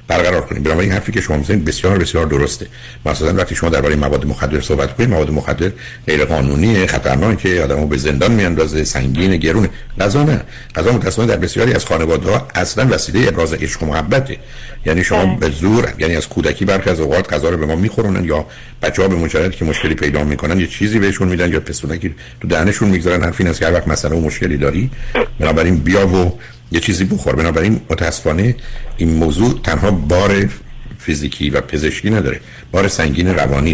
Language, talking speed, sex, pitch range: Persian, 175 wpm, male, 75-100 Hz